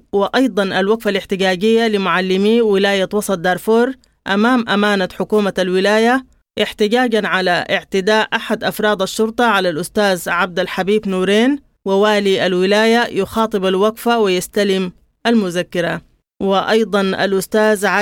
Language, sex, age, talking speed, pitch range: English, female, 20-39, 100 wpm, 190-220 Hz